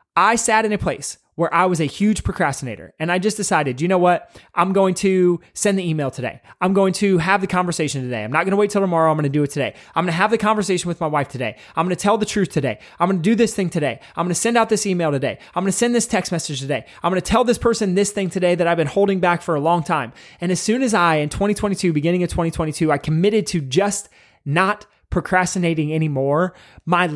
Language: English